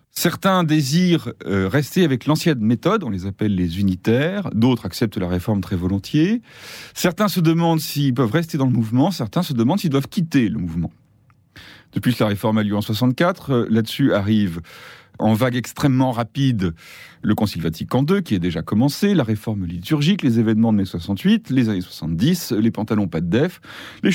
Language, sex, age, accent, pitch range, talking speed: French, male, 30-49, French, 105-160 Hz, 180 wpm